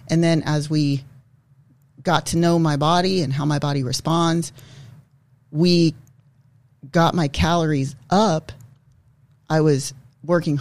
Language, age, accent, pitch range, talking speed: English, 30-49, American, 135-165 Hz, 125 wpm